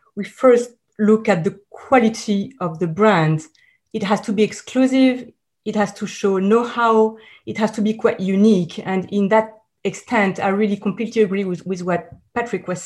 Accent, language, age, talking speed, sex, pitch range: French, English, 40-59, 175 wpm, female, 185-225 Hz